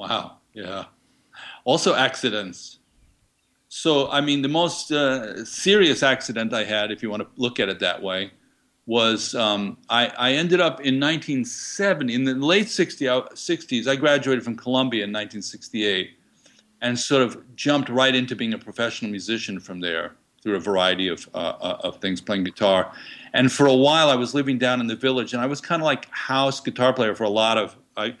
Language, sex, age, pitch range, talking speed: English, male, 50-69, 105-135 Hz, 185 wpm